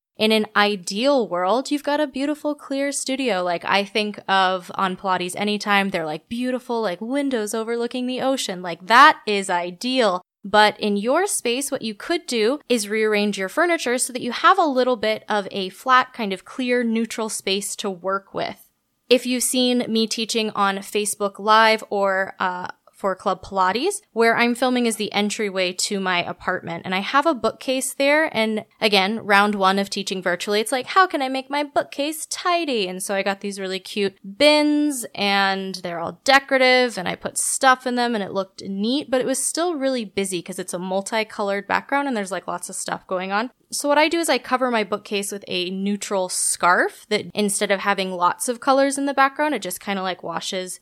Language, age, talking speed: English, 20-39, 205 wpm